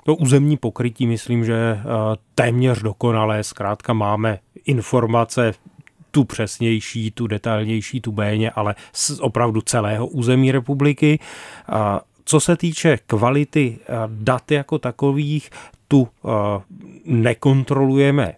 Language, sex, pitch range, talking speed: Czech, male, 110-135 Hz, 100 wpm